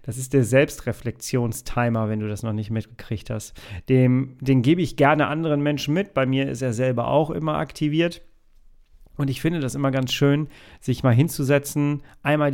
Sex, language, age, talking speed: male, German, 40-59, 175 wpm